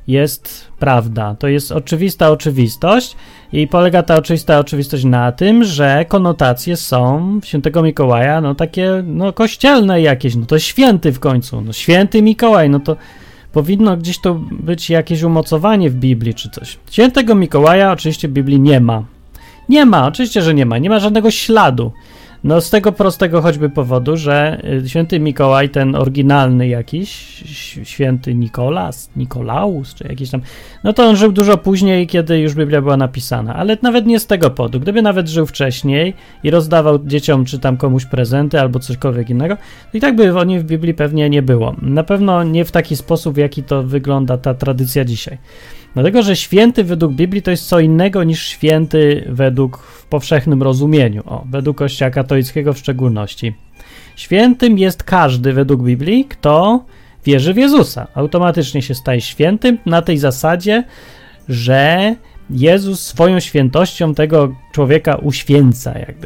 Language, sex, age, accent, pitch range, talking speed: Polish, male, 30-49, native, 135-180 Hz, 160 wpm